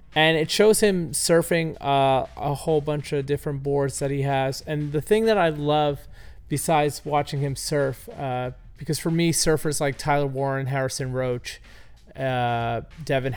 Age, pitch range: 30-49, 130-150 Hz